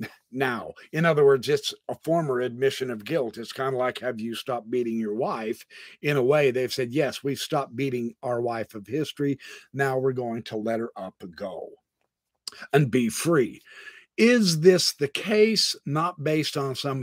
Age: 50-69